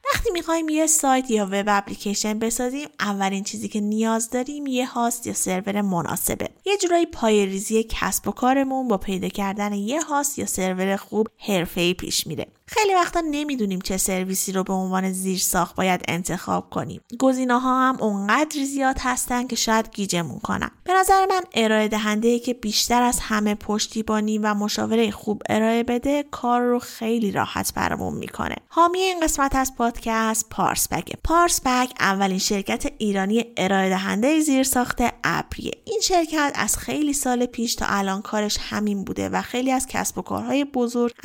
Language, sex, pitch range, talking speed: Persian, female, 205-265 Hz, 160 wpm